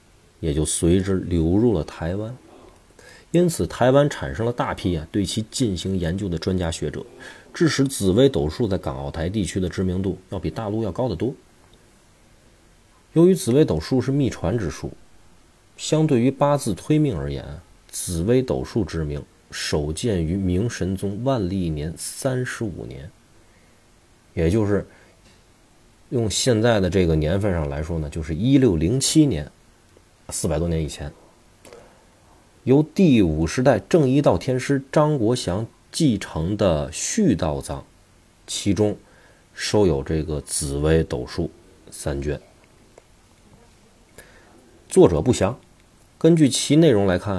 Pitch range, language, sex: 85-125 Hz, Chinese, male